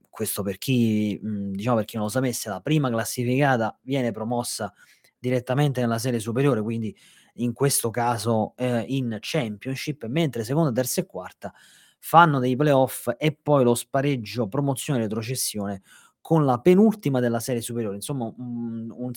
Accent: native